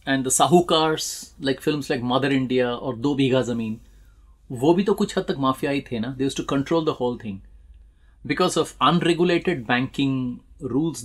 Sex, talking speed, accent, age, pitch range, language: male, 180 wpm, native, 30-49, 110-170 Hz, Hindi